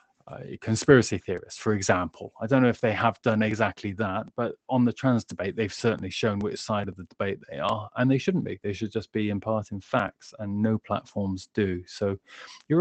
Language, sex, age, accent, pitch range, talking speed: English, male, 20-39, British, 100-120 Hz, 210 wpm